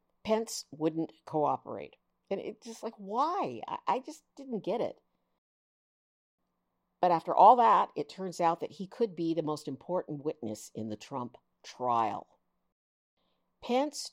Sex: female